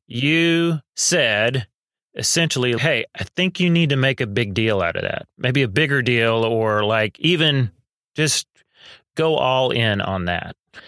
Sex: male